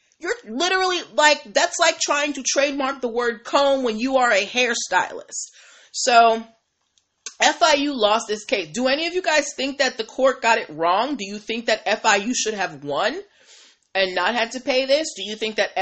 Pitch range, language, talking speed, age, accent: 185-265 Hz, English, 195 wpm, 30-49, American